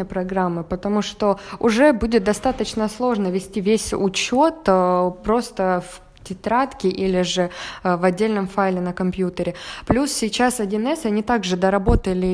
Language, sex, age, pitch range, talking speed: Russian, female, 20-39, 185-225 Hz, 125 wpm